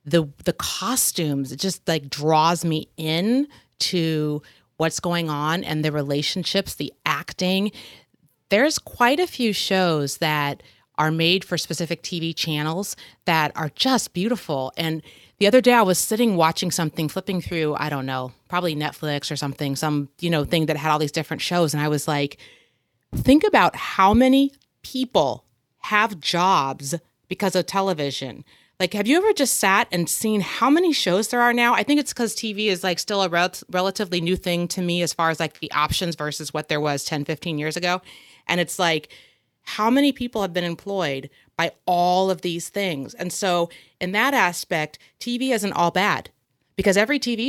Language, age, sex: English, 30-49, female